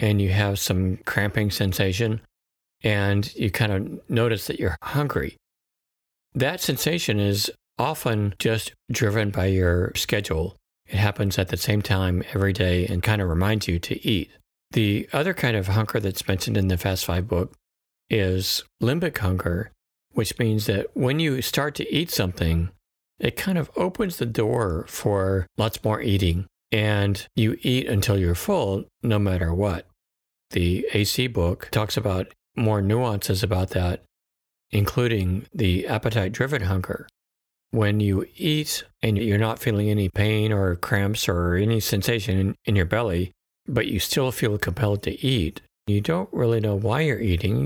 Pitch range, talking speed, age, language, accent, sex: 95-115 Hz, 155 wpm, 50-69, English, American, male